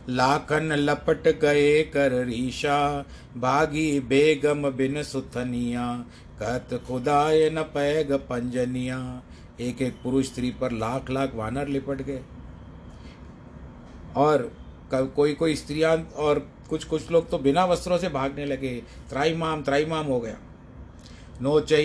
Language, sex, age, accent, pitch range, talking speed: Hindi, male, 50-69, native, 125-150 Hz, 90 wpm